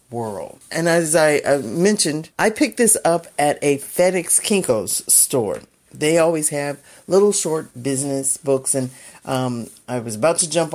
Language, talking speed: English, 155 wpm